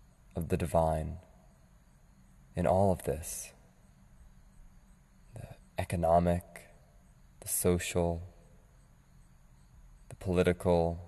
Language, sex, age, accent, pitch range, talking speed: English, male, 20-39, American, 65-90 Hz, 70 wpm